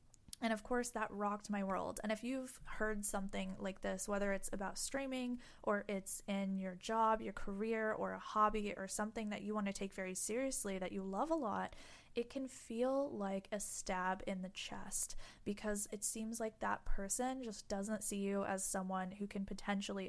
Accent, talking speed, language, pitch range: American, 195 wpm, English, 195-240 Hz